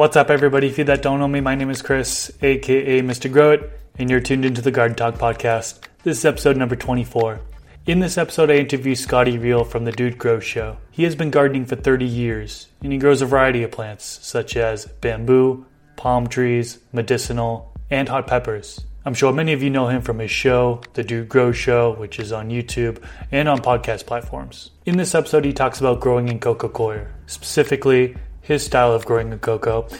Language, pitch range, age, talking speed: English, 115-140 Hz, 20-39, 210 wpm